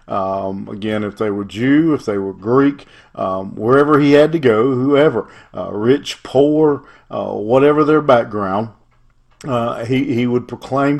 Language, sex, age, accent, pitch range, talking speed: English, male, 50-69, American, 110-140 Hz, 160 wpm